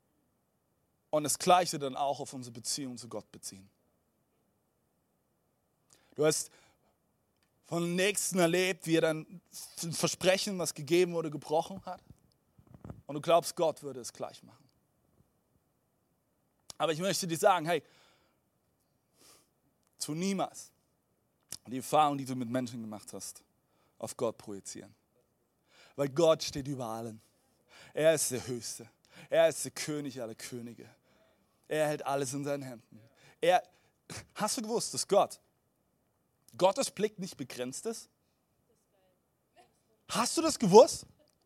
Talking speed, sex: 130 wpm, male